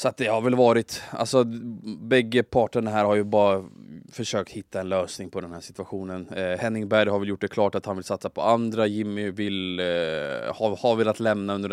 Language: Swedish